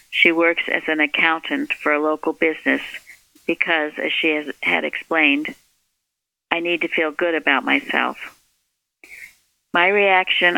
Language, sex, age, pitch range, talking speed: English, female, 50-69, 155-175 Hz, 130 wpm